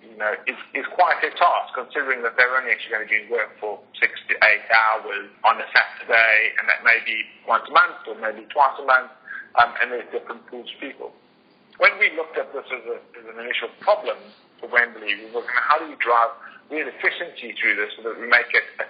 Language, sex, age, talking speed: English, male, 50-69, 225 wpm